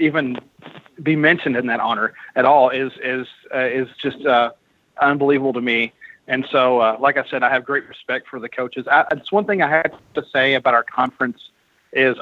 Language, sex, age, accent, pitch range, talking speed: English, male, 40-59, American, 125-145 Hz, 200 wpm